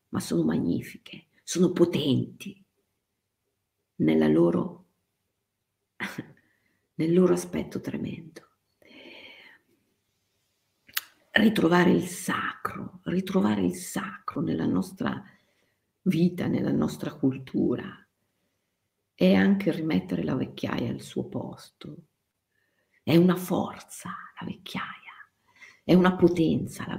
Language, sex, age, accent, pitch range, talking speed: Italian, female, 50-69, native, 125-185 Hz, 85 wpm